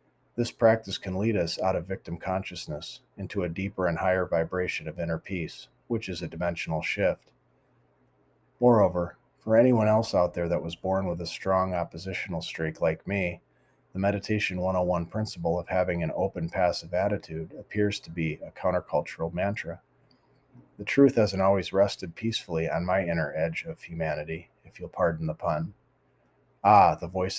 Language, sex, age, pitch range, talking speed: English, male, 30-49, 85-105 Hz, 165 wpm